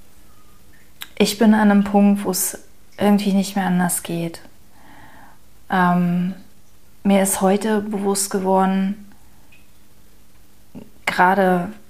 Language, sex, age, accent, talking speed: German, female, 20-39, German, 95 wpm